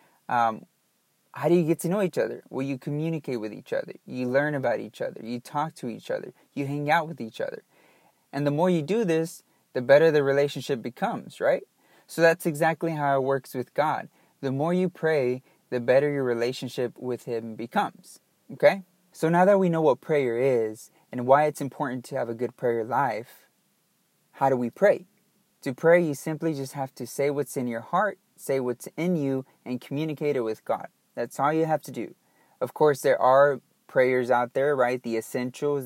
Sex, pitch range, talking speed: male, 125-160 Hz, 205 wpm